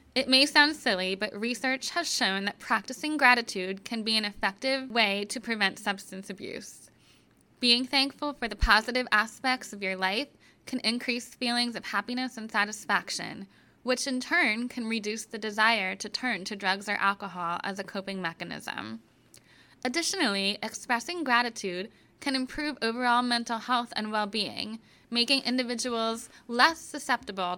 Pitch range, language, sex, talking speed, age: 195-250 Hz, English, female, 145 wpm, 10-29